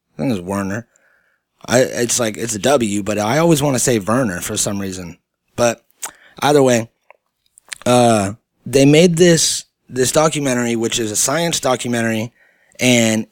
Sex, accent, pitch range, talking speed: male, American, 115-145 Hz, 160 wpm